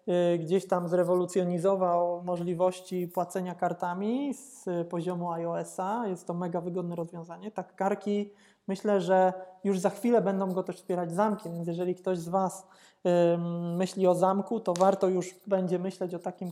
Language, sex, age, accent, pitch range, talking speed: Polish, male, 20-39, native, 180-195 Hz, 155 wpm